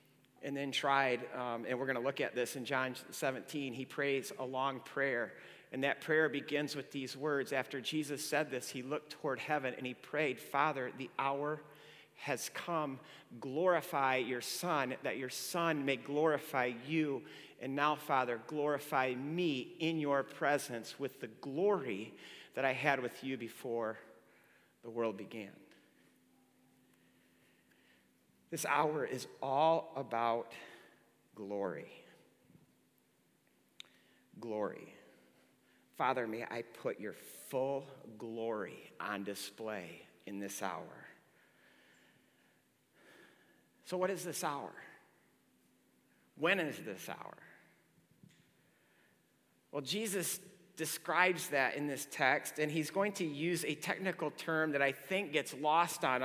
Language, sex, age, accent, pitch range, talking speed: English, male, 40-59, American, 125-150 Hz, 130 wpm